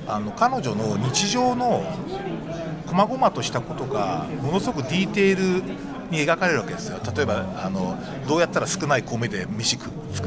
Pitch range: 135-205 Hz